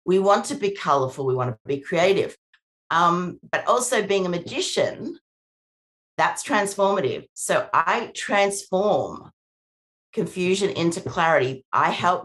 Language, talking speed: English, 125 wpm